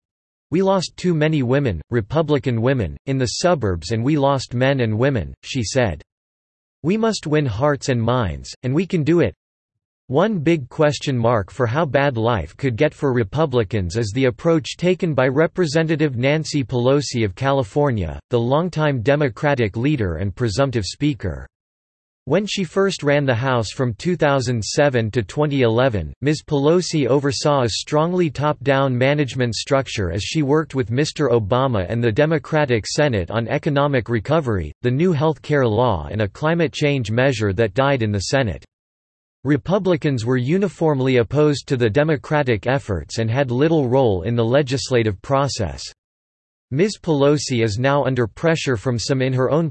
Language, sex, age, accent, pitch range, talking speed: English, male, 40-59, American, 115-150 Hz, 160 wpm